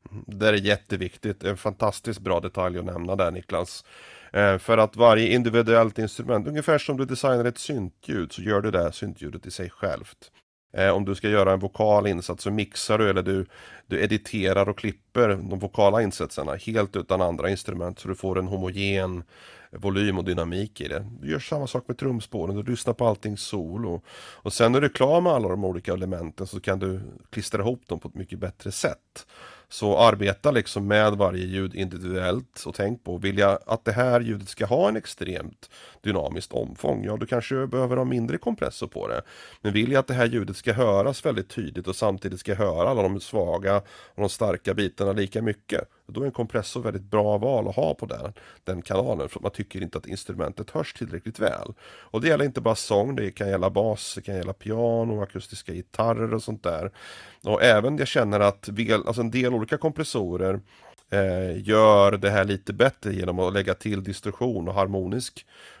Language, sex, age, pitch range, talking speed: Swedish, male, 30-49, 95-115 Hz, 195 wpm